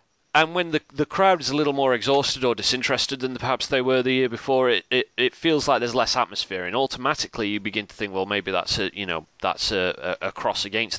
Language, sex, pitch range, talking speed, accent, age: English, male, 95-125 Hz, 245 wpm, British, 30-49